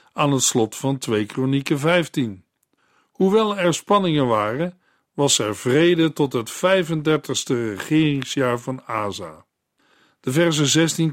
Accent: Dutch